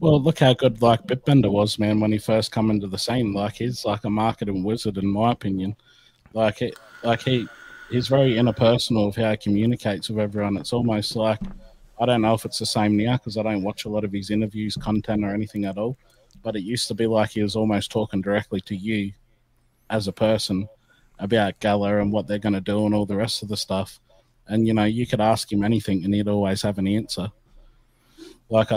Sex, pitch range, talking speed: male, 105-115 Hz, 225 wpm